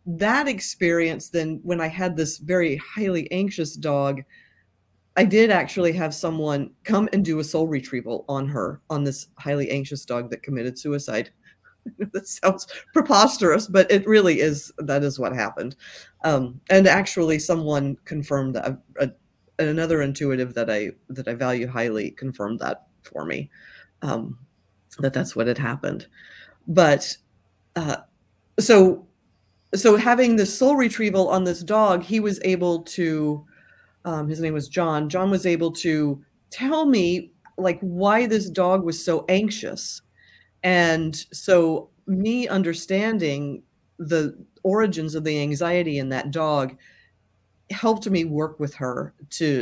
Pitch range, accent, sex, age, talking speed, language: 145-195 Hz, American, female, 40-59, 145 wpm, English